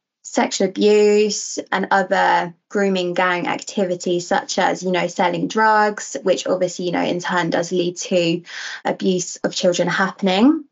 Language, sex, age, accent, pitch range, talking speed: English, female, 20-39, British, 180-215 Hz, 145 wpm